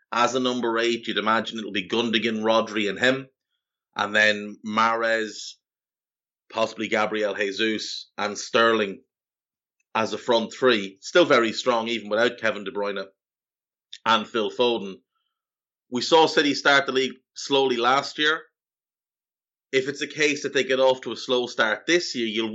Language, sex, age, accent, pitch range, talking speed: English, male, 30-49, Irish, 110-130 Hz, 155 wpm